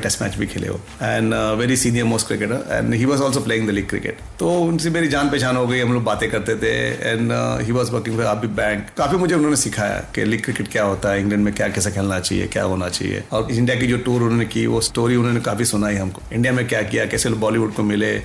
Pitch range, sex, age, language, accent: 105-130 Hz, male, 40-59, Hindi, native